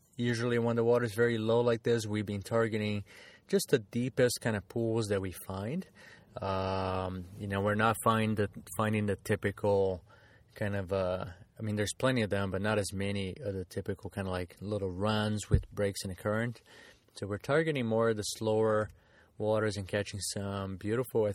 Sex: male